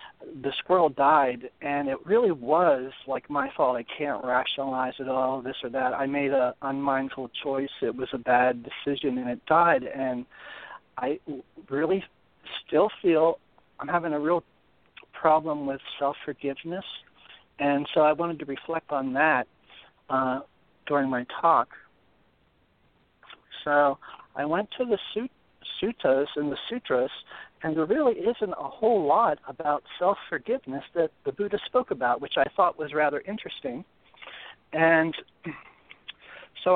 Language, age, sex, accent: English, 60-79, male, American